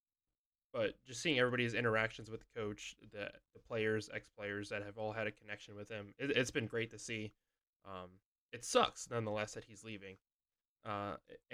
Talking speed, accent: 180 wpm, American